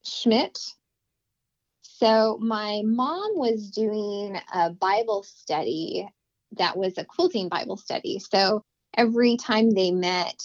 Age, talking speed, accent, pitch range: 20-39, 115 wpm, American, 195-245 Hz